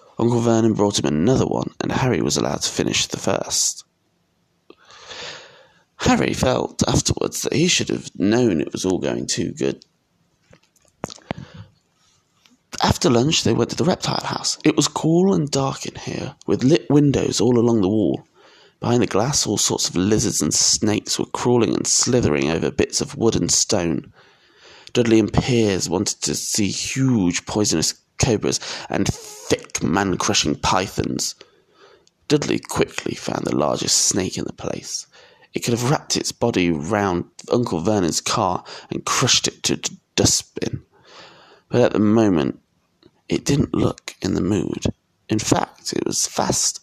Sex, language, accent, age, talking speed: male, English, British, 20-39, 160 wpm